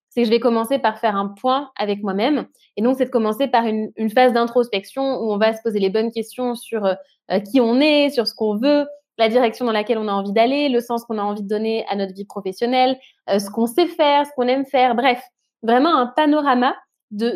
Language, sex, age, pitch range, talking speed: French, female, 20-39, 215-275 Hz, 245 wpm